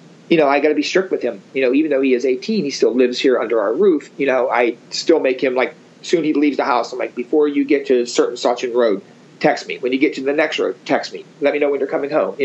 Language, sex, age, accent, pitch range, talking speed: English, male, 40-59, American, 125-195 Hz, 305 wpm